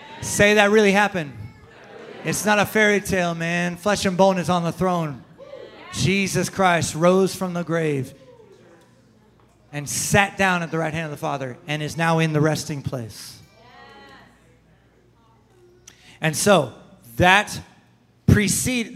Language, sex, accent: English, male, American